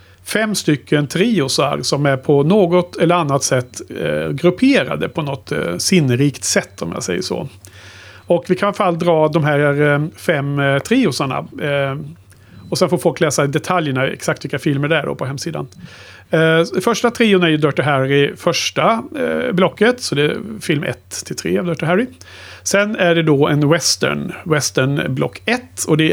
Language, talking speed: Swedish, 180 wpm